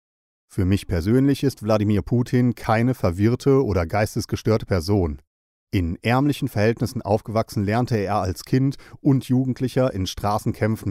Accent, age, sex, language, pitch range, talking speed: German, 40-59, male, German, 95-125 Hz, 125 wpm